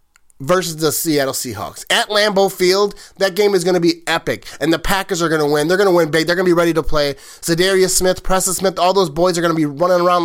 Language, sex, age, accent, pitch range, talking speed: English, male, 30-49, American, 160-195 Hz, 270 wpm